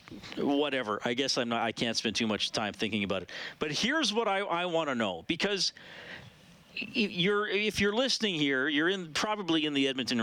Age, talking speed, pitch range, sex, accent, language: 40-59, 205 wpm, 120-190 Hz, male, American, English